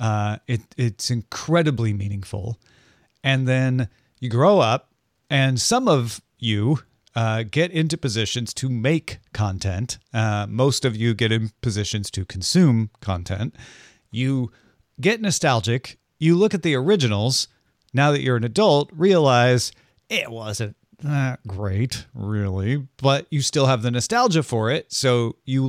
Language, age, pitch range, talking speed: English, 40-59, 110-135 Hz, 140 wpm